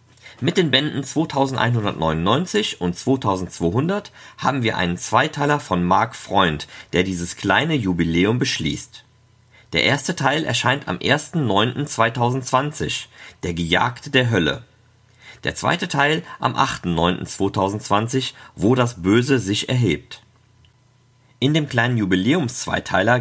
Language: German